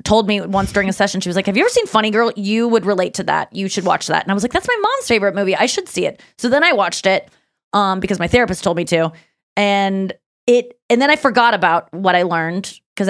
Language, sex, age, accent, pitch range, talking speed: English, female, 20-39, American, 190-235 Hz, 270 wpm